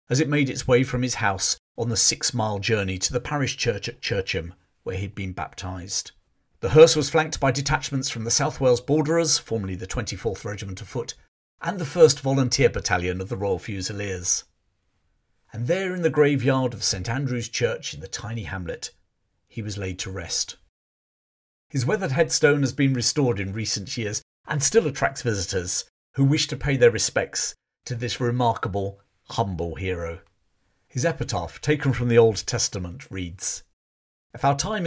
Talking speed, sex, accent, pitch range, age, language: 180 wpm, male, British, 95-140 Hz, 50-69, English